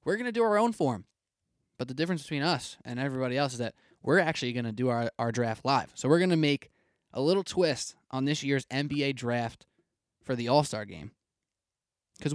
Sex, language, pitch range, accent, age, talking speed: male, English, 125-160 Hz, American, 20-39, 215 wpm